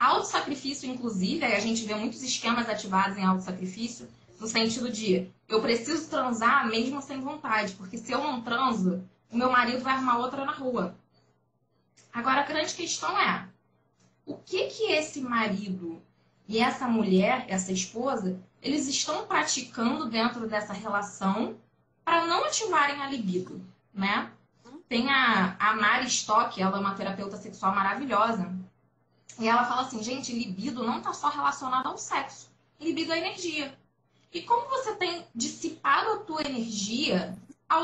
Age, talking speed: 20-39, 150 wpm